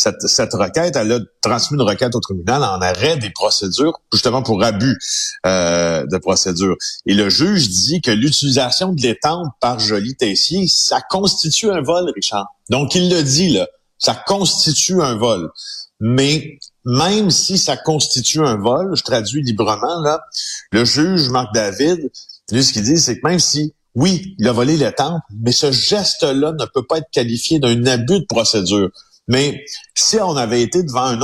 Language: French